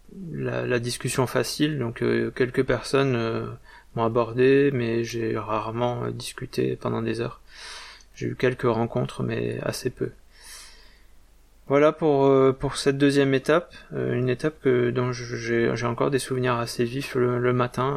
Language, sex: French, male